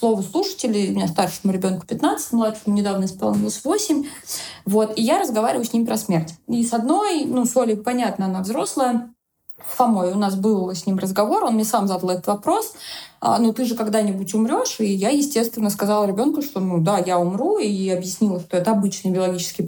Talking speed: 190 wpm